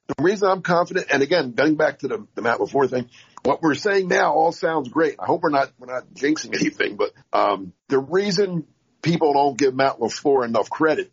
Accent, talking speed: American, 215 wpm